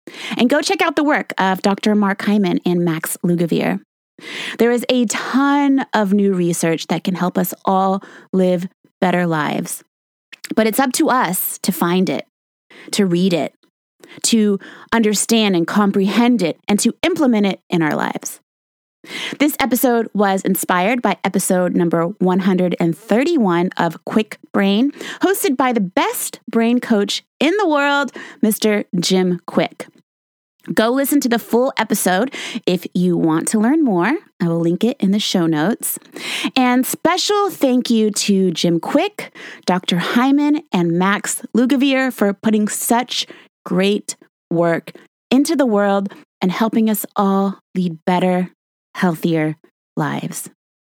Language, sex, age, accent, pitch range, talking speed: English, female, 20-39, American, 180-255 Hz, 145 wpm